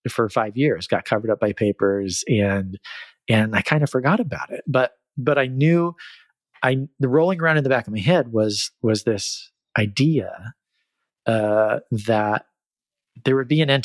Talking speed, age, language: 180 wpm, 30-49, English